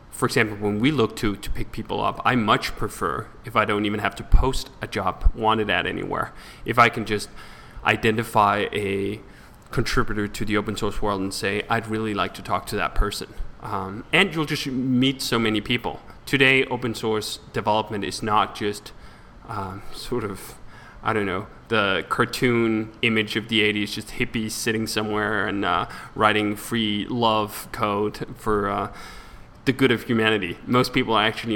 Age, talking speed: 20-39, 180 wpm